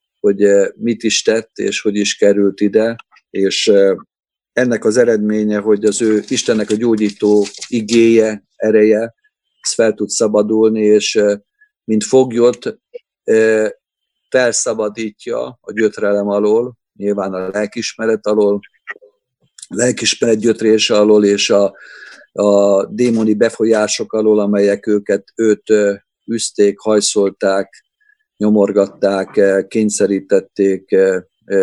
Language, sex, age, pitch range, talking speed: Hungarian, male, 50-69, 100-115 Hz, 100 wpm